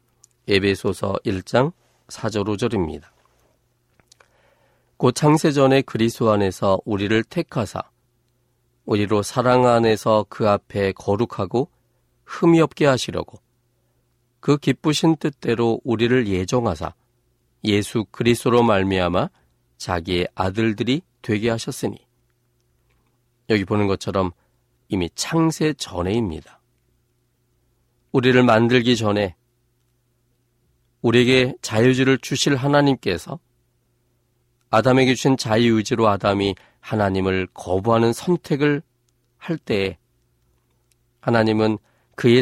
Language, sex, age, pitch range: Korean, male, 40-59, 110-125 Hz